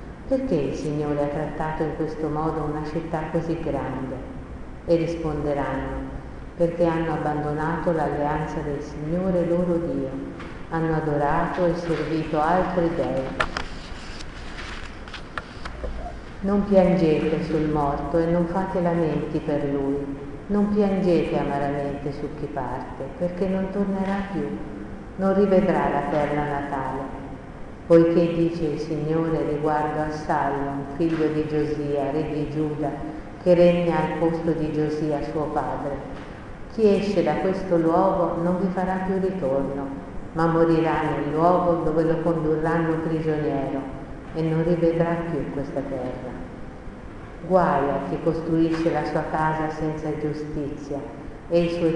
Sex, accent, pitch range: female, native, 145-170 Hz